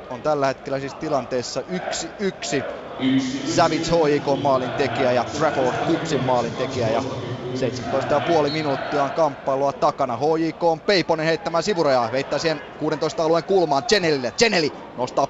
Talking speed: 135 wpm